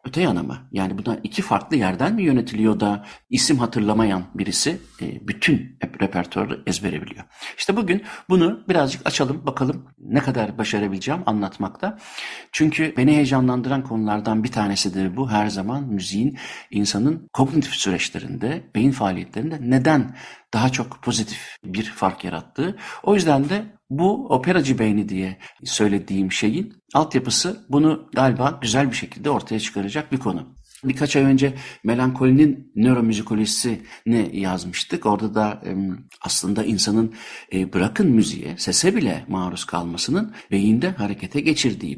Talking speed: 125 wpm